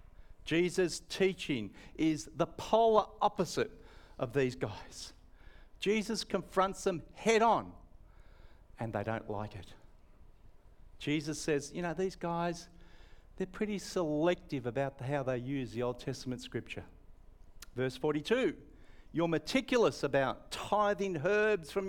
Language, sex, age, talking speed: English, male, 60-79, 120 wpm